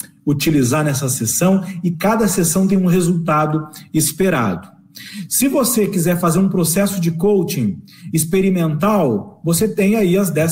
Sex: male